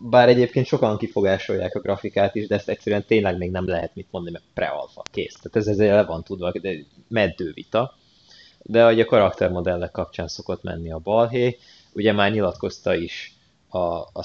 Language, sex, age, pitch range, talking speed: Hungarian, male, 20-39, 90-110 Hz, 180 wpm